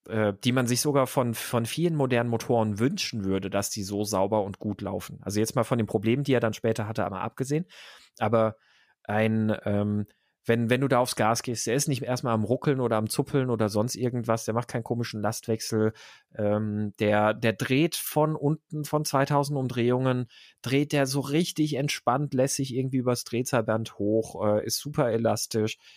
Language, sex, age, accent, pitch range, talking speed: German, male, 30-49, German, 110-140 Hz, 185 wpm